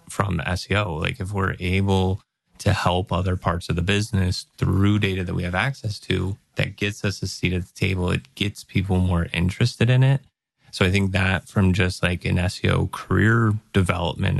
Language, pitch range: English, 95-110 Hz